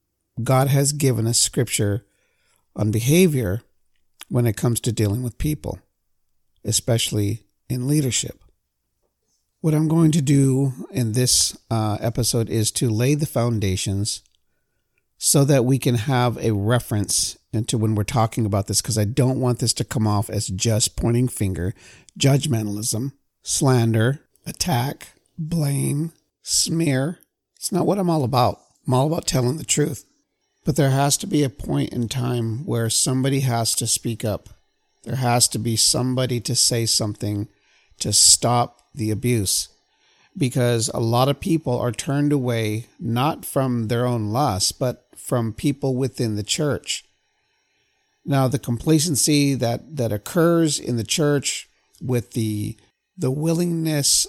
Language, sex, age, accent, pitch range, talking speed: English, male, 50-69, American, 110-140 Hz, 145 wpm